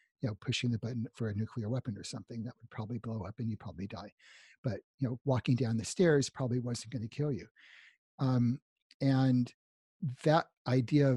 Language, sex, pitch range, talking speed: English, male, 115-135 Hz, 195 wpm